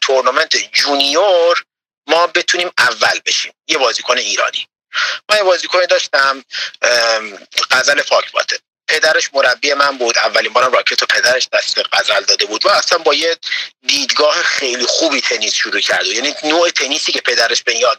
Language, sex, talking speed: Persian, male, 145 wpm